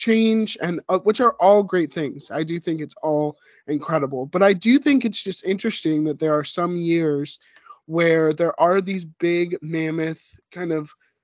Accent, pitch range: American, 150-185 Hz